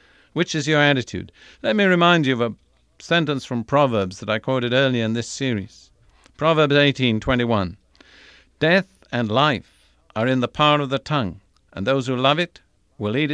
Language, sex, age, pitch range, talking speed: English, male, 50-69, 110-150 Hz, 175 wpm